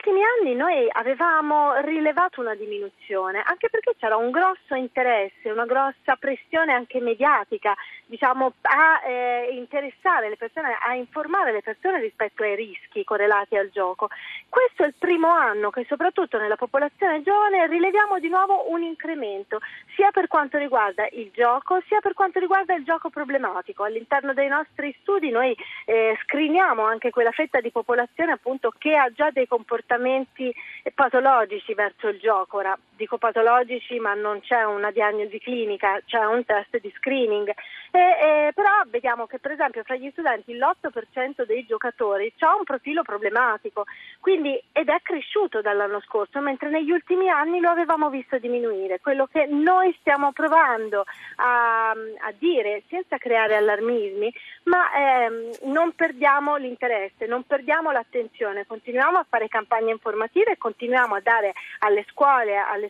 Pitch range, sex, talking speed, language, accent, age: 225-330 Hz, female, 150 wpm, Italian, native, 40-59